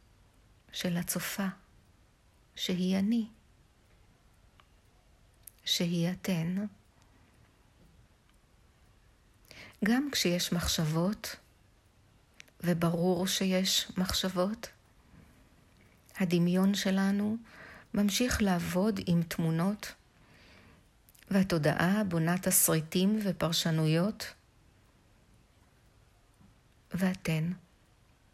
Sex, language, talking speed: female, Hebrew, 50 wpm